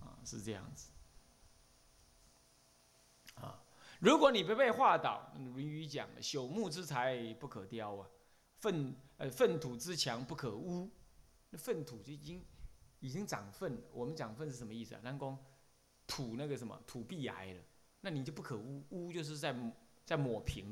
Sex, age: male, 20-39